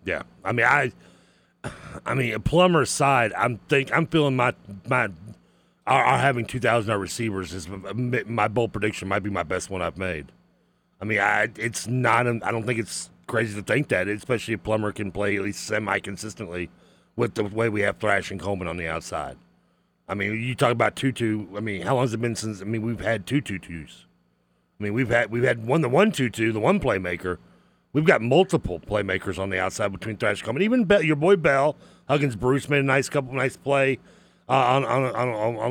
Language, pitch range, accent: English, 100-135 Hz, American